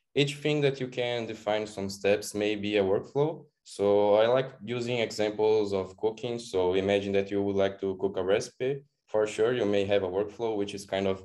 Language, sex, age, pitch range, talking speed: English, male, 10-29, 100-115 Hz, 215 wpm